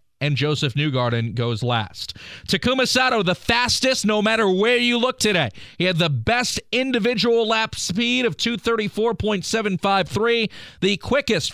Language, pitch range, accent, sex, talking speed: English, 150-220 Hz, American, male, 135 wpm